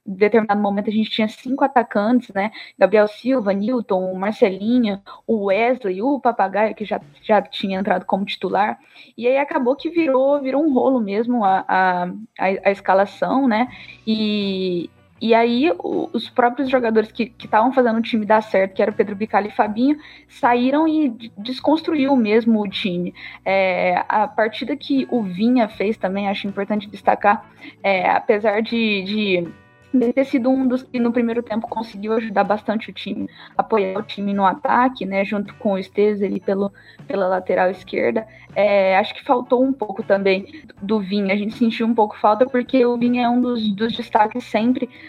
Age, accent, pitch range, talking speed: 10-29, Brazilian, 200-245 Hz, 175 wpm